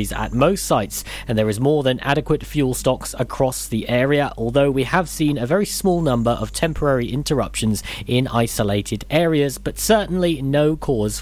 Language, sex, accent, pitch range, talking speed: English, male, British, 115-155 Hz, 170 wpm